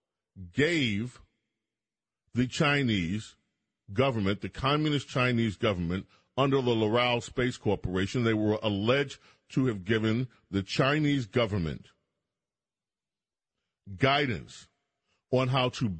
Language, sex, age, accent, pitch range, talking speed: English, male, 40-59, American, 110-135 Hz, 100 wpm